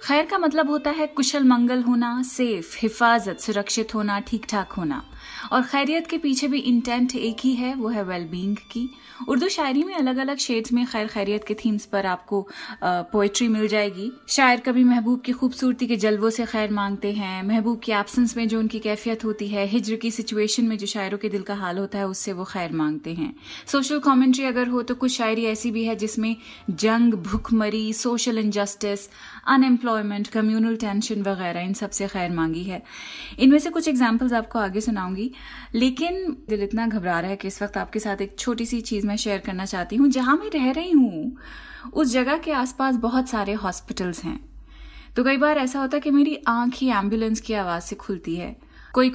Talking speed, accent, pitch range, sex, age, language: 200 wpm, native, 205-255 Hz, female, 20-39, Hindi